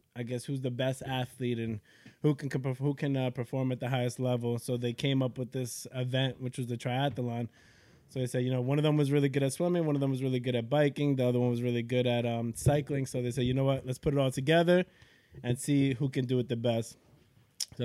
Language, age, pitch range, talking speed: English, 20-39, 115-135 Hz, 270 wpm